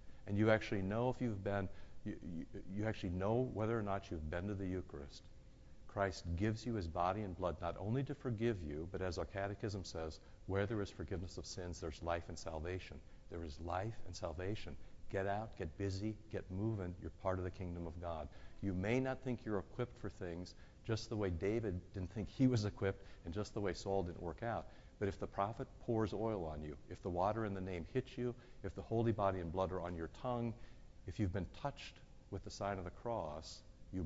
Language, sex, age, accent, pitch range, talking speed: English, male, 60-79, American, 90-110 Hz, 220 wpm